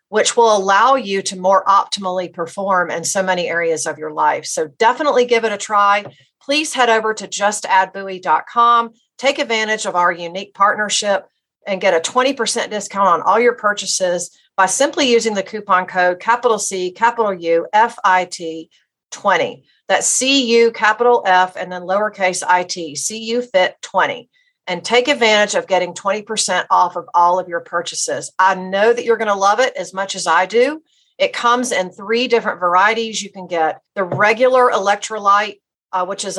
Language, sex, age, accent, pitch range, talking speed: English, female, 50-69, American, 185-230 Hz, 180 wpm